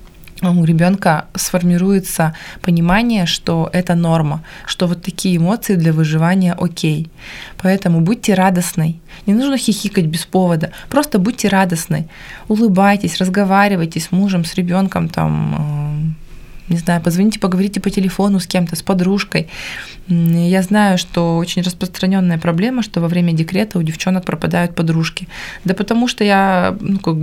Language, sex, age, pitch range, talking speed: Russian, female, 20-39, 165-195 Hz, 135 wpm